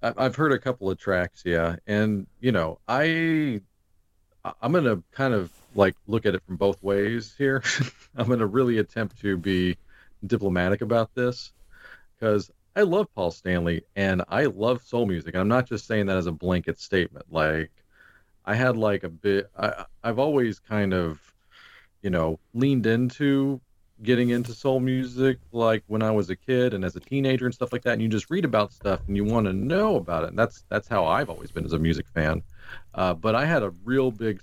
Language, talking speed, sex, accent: English, 200 wpm, male, American